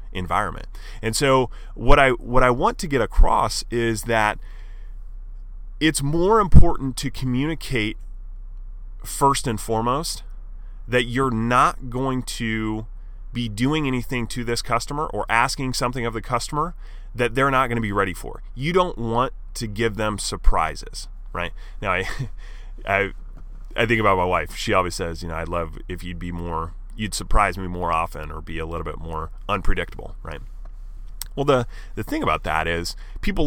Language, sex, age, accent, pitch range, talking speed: English, male, 30-49, American, 90-120 Hz, 170 wpm